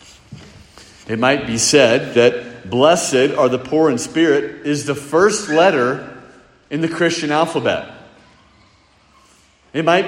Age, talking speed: 40-59, 125 wpm